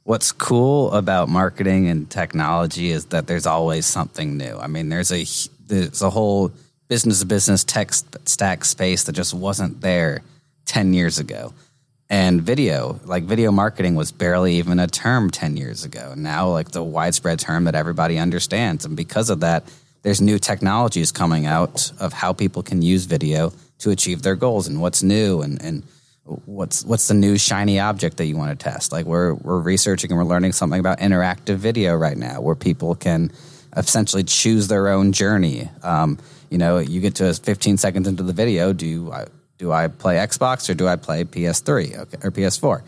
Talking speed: 185 wpm